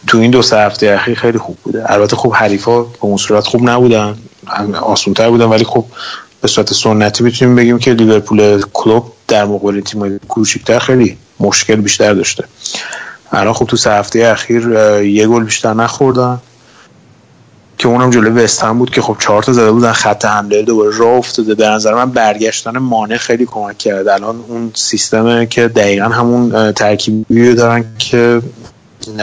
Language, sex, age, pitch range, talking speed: Persian, male, 30-49, 105-120 Hz, 165 wpm